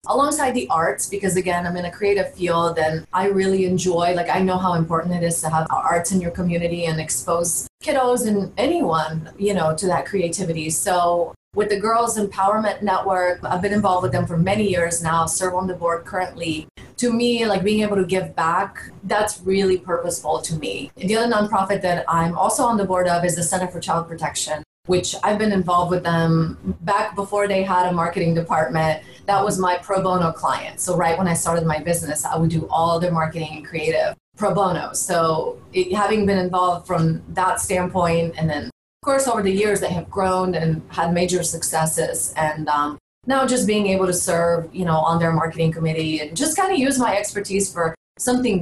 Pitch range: 165-195 Hz